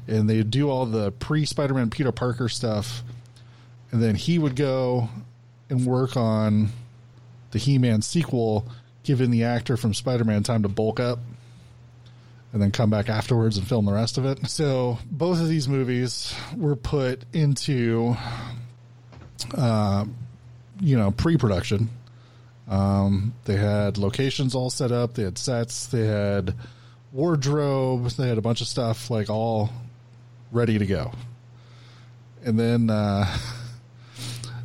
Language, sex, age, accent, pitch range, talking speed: English, male, 20-39, American, 110-125 Hz, 135 wpm